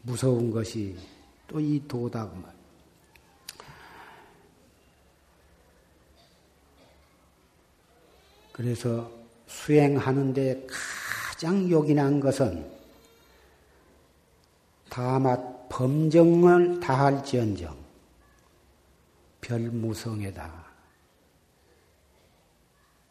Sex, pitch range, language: male, 95-145 Hz, Korean